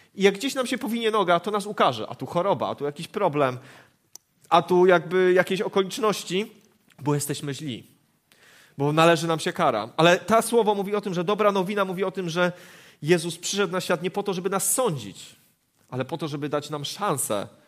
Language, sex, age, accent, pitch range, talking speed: Polish, male, 30-49, native, 155-205 Hz, 205 wpm